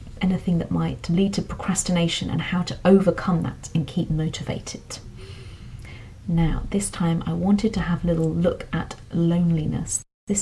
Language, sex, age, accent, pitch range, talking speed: English, female, 30-49, British, 160-185 Hz, 155 wpm